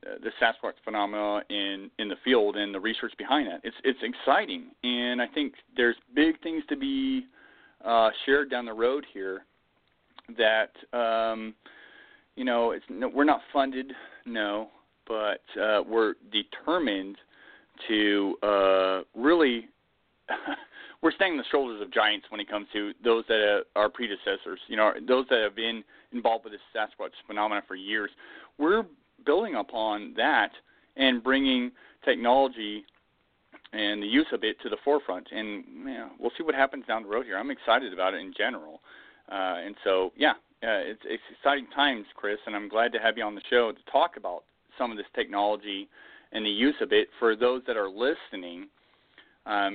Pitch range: 105-135 Hz